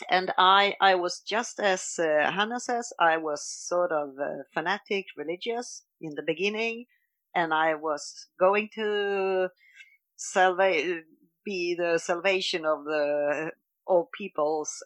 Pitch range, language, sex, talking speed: 165-240 Hz, English, female, 130 wpm